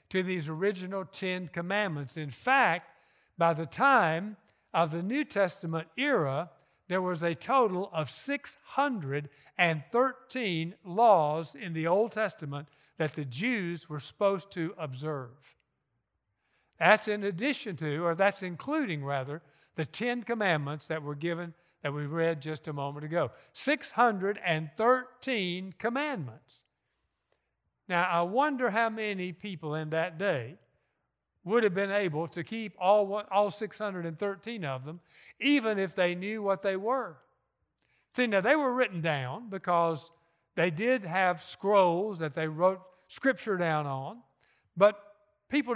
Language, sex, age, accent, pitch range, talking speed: English, male, 60-79, American, 155-210 Hz, 135 wpm